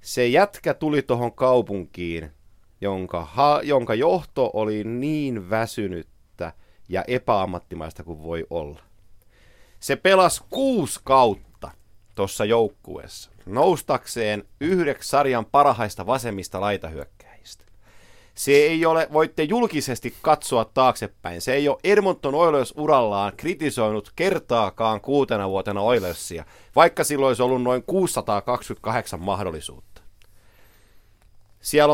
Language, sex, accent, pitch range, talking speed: Finnish, male, native, 100-135 Hz, 100 wpm